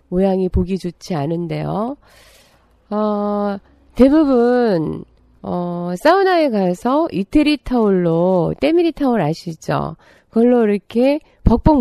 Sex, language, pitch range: female, Korean, 180-255 Hz